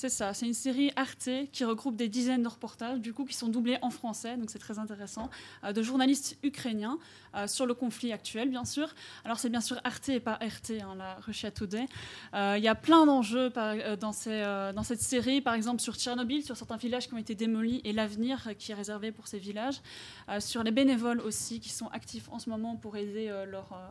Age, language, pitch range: 20-39, French, 215-255 Hz